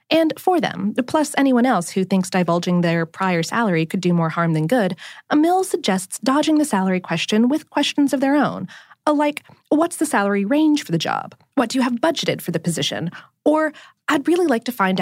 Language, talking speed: English, 205 wpm